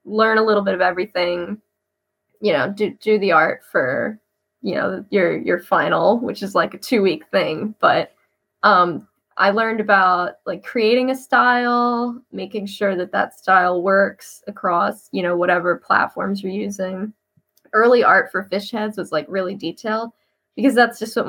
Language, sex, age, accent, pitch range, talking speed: English, female, 10-29, American, 190-235 Hz, 165 wpm